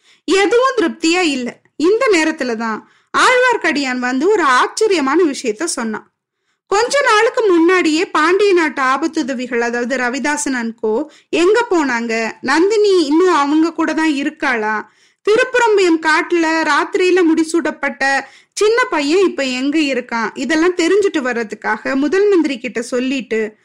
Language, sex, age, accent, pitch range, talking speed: Tamil, female, 20-39, native, 265-365 Hz, 95 wpm